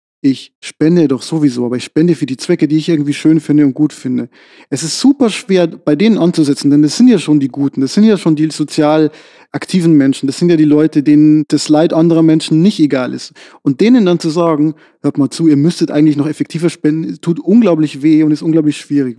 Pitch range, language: 145-170 Hz, German